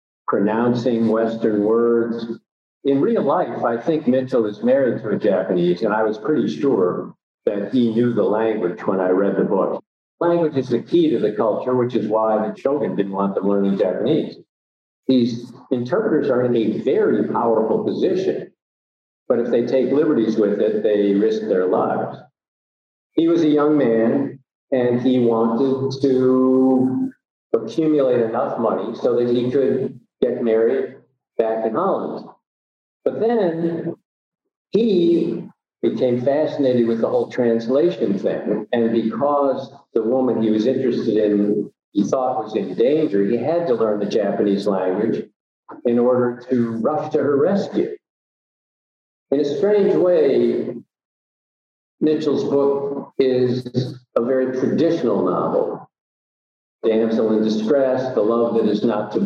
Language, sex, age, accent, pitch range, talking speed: English, male, 50-69, American, 110-135 Hz, 145 wpm